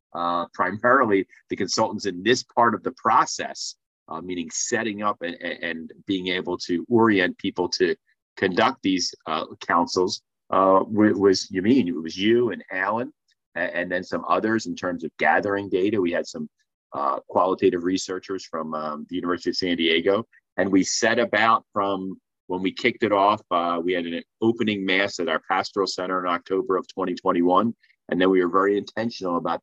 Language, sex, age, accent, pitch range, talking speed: English, male, 30-49, American, 90-115 Hz, 180 wpm